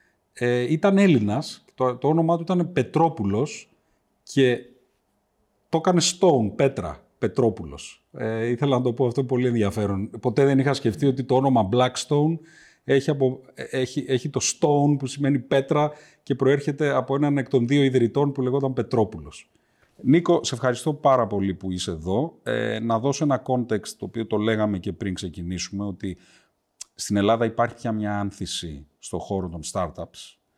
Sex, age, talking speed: male, 30-49, 160 wpm